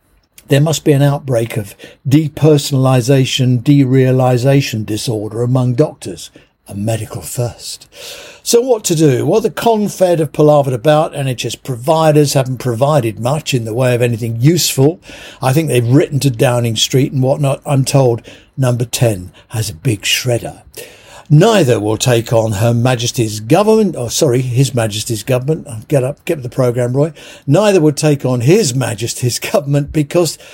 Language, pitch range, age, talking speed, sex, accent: English, 120-155 Hz, 60-79, 155 wpm, male, British